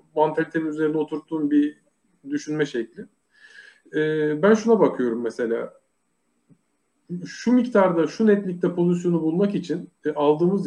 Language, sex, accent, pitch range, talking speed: English, male, Turkish, 155-205 Hz, 100 wpm